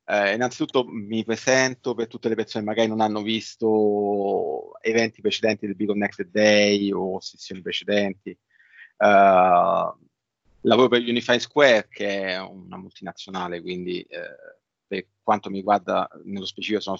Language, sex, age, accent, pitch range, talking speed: Italian, male, 30-49, native, 95-110 Hz, 140 wpm